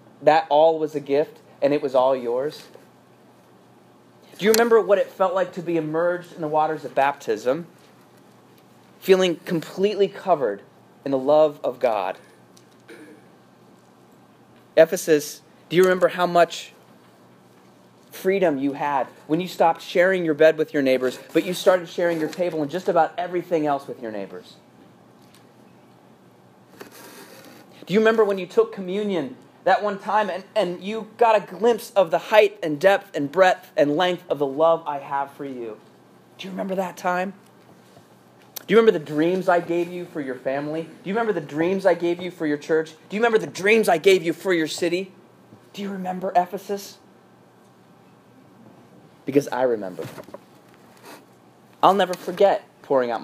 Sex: male